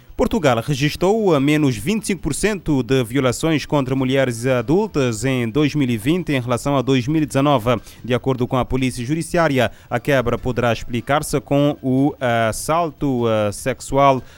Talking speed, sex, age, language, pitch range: 120 wpm, male, 30-49, Portuguese, 120-145 Hz